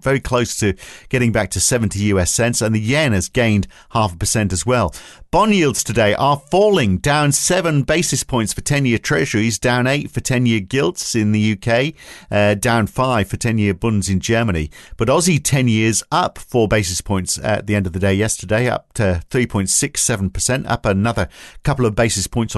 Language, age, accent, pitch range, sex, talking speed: English, 50-69, British, 105-135 Hz, male, 190 wpm